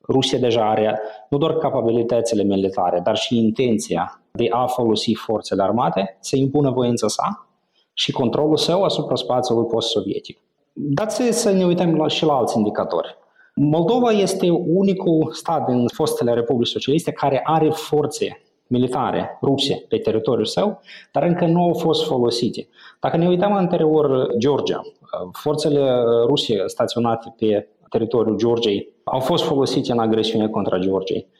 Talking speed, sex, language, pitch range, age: 140 wpm, male, Romanian, 115-160 Hz, 20-39